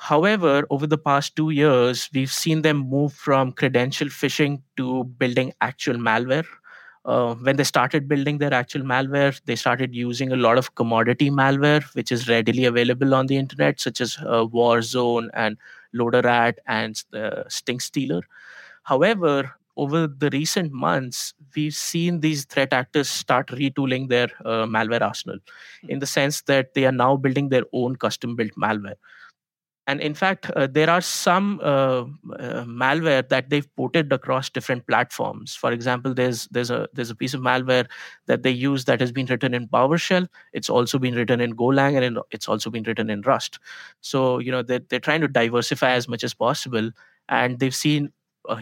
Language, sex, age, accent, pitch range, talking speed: English, male, 20-39, Indian, 120-145 Hz, 175 wpm